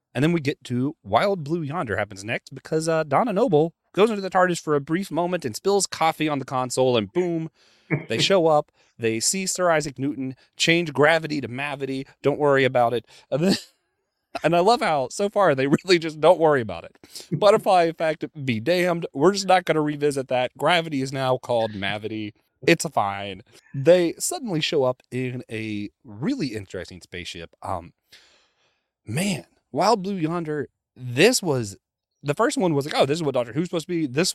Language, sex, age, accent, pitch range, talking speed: English, male, 30-49, American, 120-170 Hz, 190 wpm